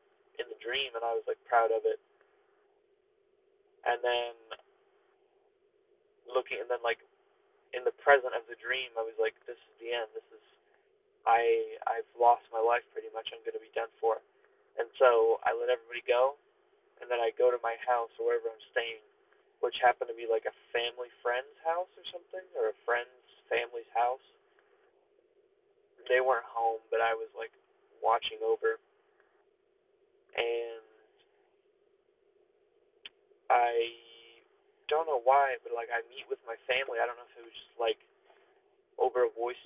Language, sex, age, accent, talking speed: English, male, 20-39, American, 165 wpm